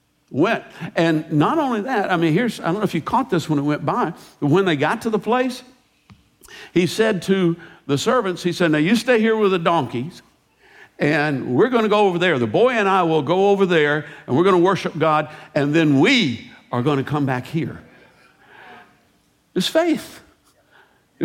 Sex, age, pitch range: male, 60-79, 135-190 Hz